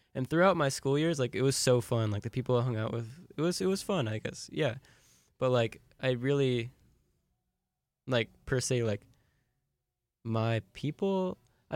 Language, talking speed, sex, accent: English, 180 wpm, male, American